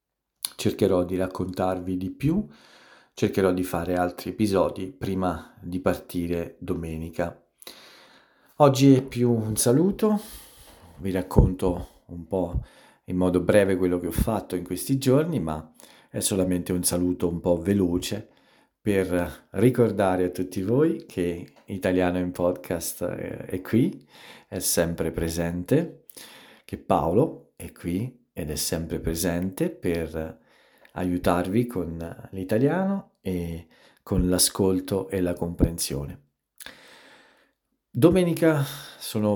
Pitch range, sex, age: 85-115 Hz, male, 50-69